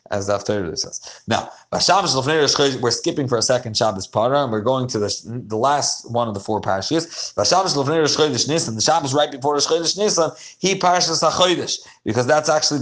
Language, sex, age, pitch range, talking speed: English, male, 30-49, 115-150 Hz, 170 wpm